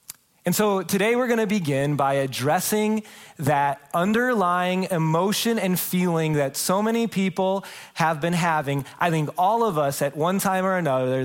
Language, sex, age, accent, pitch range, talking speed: English, male, 30-49, American, 145-200 Hz, 165 wpm